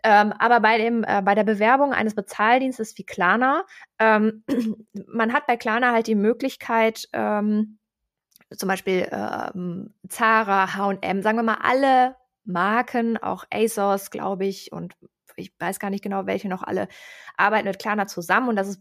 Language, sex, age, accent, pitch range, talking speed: German, female, 20-39, German, 200-245 Hz, 165 wpm